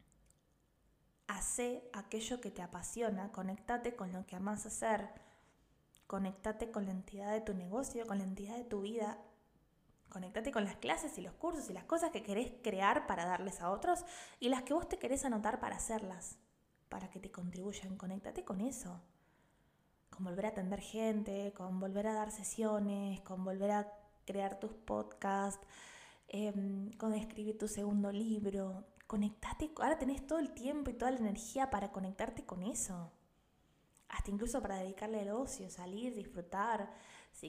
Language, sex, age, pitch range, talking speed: Spanish, female, 20-39, 195-235 Hz, 160 wpm